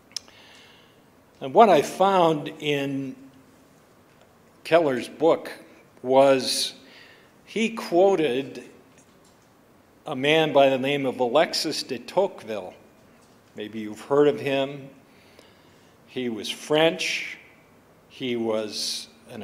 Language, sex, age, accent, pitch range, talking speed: English, male, 50-69, American, 130-160 Hz, 95 wpm